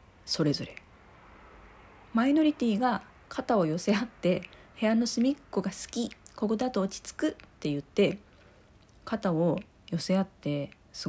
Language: Japanese